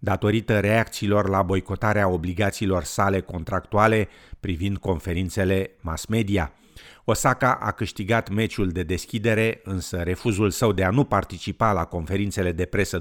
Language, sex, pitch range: Romanian, male, 95-115 Hz